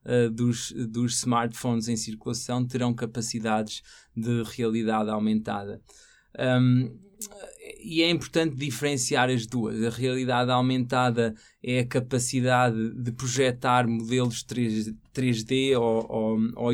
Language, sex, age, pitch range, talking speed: Portuguese, male, 20-39, 115-125 Hz, 105 wpm